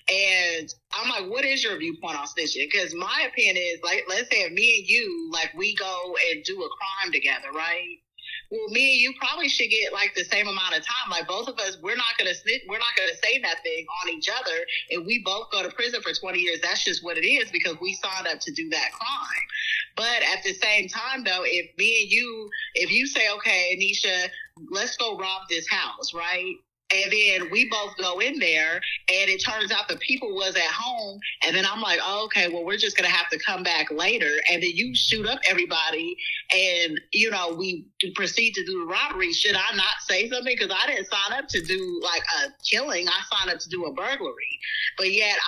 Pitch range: 180-275 Hz